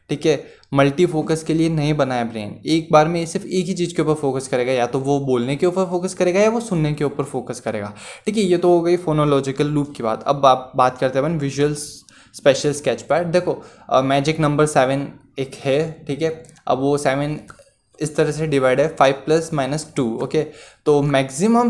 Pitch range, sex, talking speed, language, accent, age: 130-155 Hz, male, 215 wpm, Hindi, native, 20-39